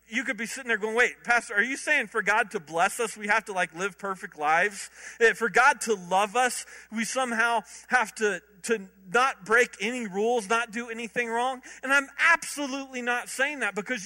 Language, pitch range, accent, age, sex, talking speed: English, 210-275 Hz, American, 40-59, male, 205 wpm